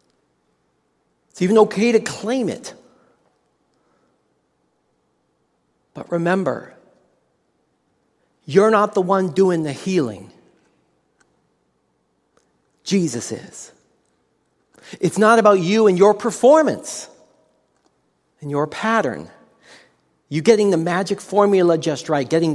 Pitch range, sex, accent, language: 145-205 Hz, male, American, English